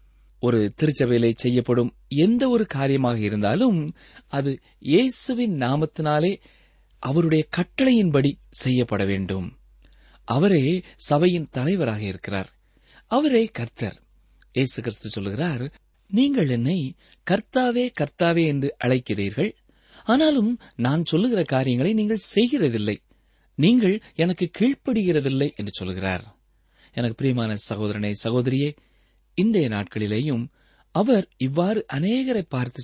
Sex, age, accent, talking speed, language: male, 30-49, native, 90 wpm, Tamil